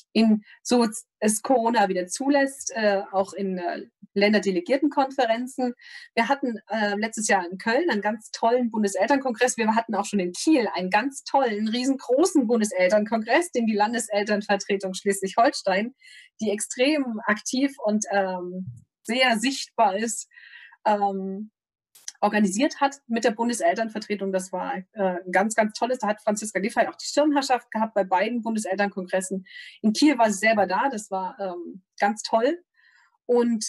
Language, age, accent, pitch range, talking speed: German, 30-49, German, 205-255 Hz, 145 wpm